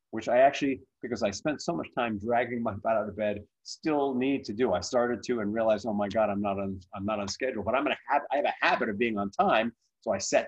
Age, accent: 30-49, American